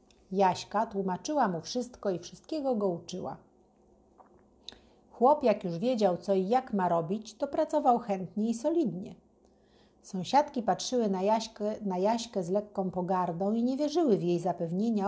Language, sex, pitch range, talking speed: Polish, female, 190-240 Hz, 145 wpm